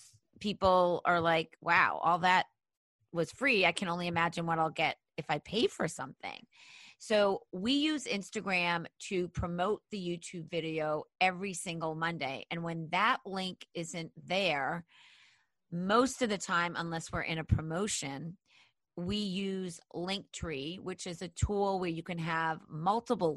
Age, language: 30-49, English